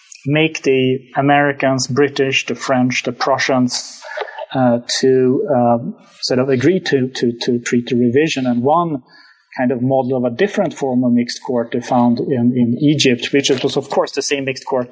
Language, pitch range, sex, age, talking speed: English, 125-145 Hz, male, 30-49, 180 wpm